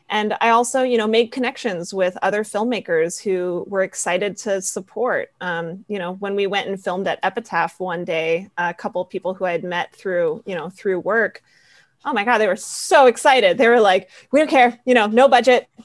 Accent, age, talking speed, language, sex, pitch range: American, 30-49, 215 wpm, English, female, 190-235 Hz